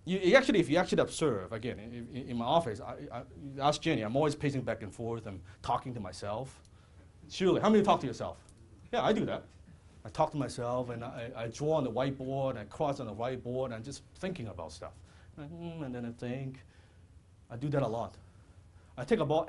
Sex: male